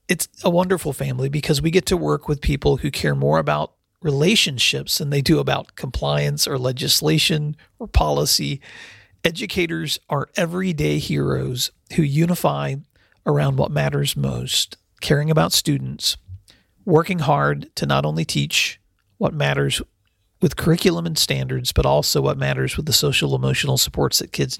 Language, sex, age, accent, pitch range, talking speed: English, male, 40-59, American, 95-155 Hz, 145 wpm